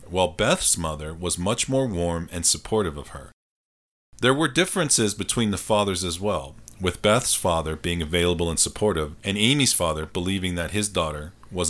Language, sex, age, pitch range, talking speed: English, male, 40-59, 85-110 Hz, 175 wpm